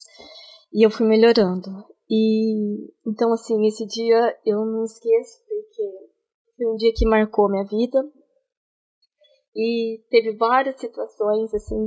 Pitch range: 215-235 Hz